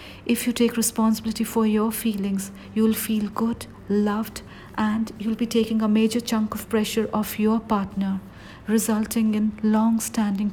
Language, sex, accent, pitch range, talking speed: English, female, Indian, 205-230 Hz, 150 wpm